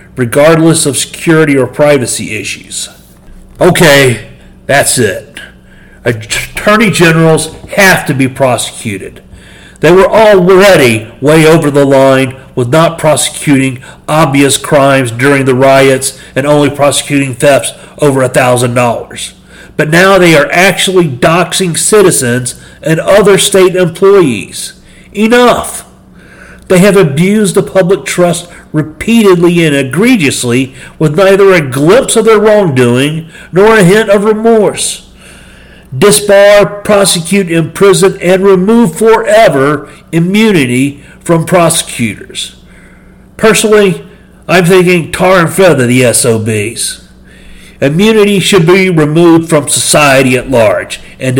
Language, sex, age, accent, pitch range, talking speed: English, male, 40-59, American, 130-190 Hz, 110 wpm